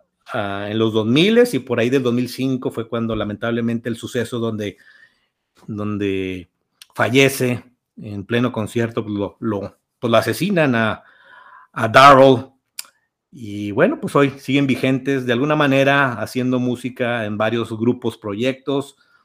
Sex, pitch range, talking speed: male, 115-135 Hz, 125 wpm